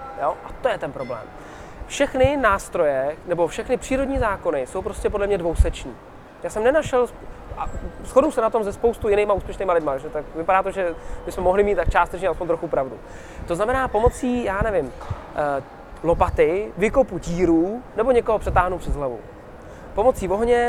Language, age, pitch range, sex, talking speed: Czech, 20-39, 170-235 Hz, male, 160 wpm